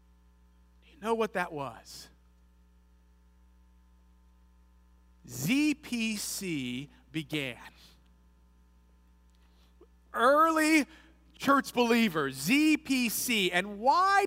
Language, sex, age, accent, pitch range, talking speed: English, male, 40-59, American, 135-225 Hz, 50 wpm